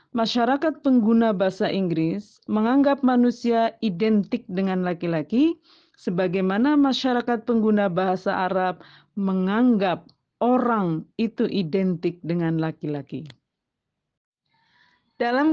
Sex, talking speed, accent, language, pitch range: female, 80 wpm, native, Indonesian, 190-245 Hz